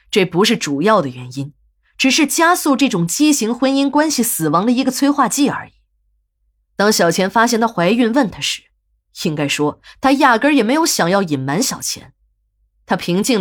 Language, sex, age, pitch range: Chinese, female, 20-39, 155-240 Hz